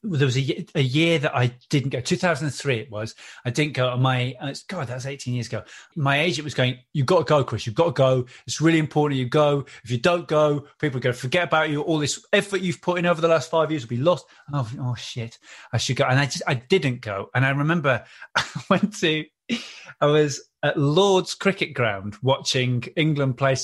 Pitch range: 125-160 Hz